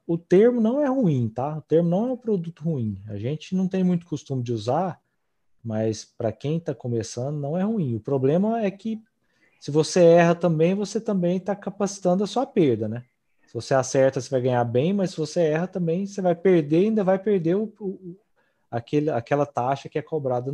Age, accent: 20-39, Brazilian